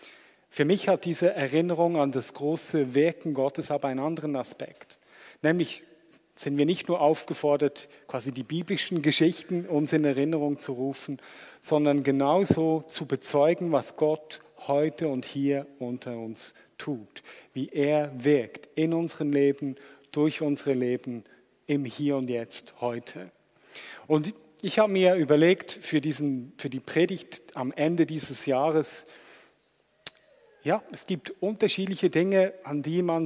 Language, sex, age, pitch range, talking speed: German, male, 40-59, 140-165 Hz, 140 wpm